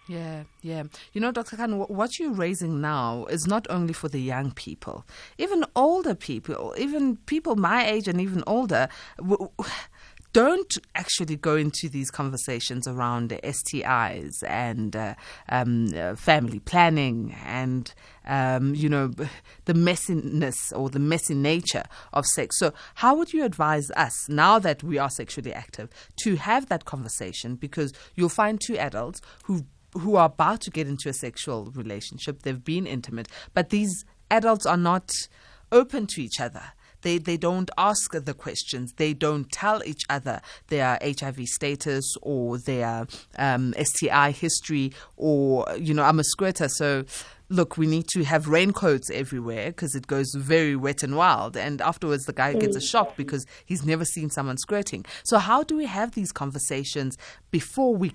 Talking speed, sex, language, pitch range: 160 wpm, female, English, 135-180 Hz